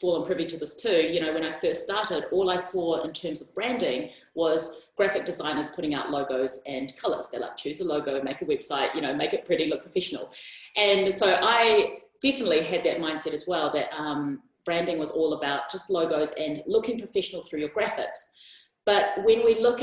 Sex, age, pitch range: female, 30-49, 165-245 Hz